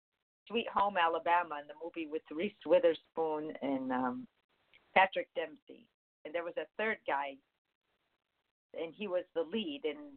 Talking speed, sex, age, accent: 150 wpm, female, 50-69, American